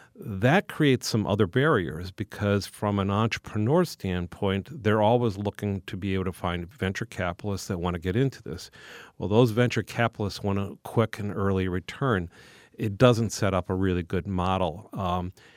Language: English